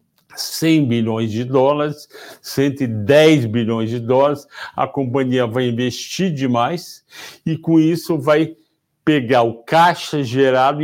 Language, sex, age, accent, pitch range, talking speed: Portuguese, male, 60-79, Brazilian, 135-180 Hz, 115 wpm